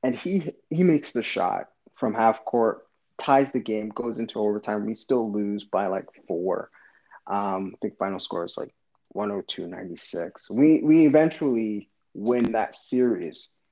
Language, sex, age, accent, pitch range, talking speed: English, male, 30-49, American, 110-155 Hz, 175 wpm